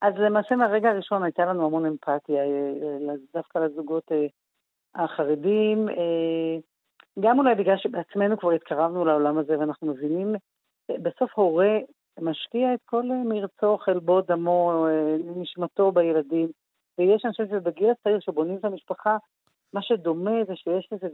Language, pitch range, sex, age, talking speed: Hebrew, 165-215 Hz, female, 40-59, 120 wpm